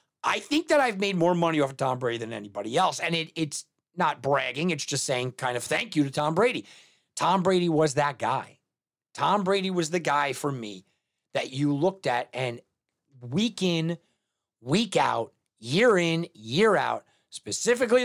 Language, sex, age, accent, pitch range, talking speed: English, male, 40-59, American, 145-195 Hz, 185 wpm